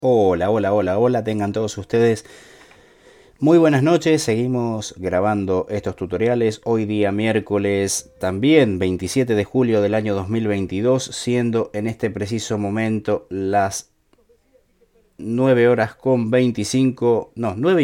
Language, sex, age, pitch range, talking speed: Spanish, male, 30-49, 95-120 Hz, 120 wpm